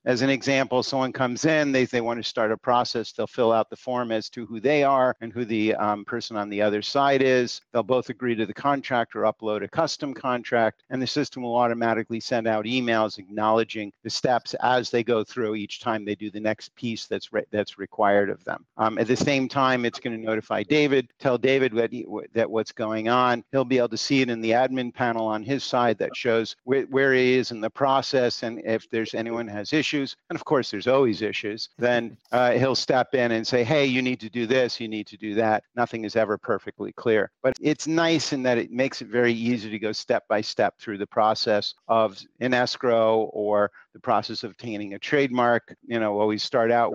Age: 50-69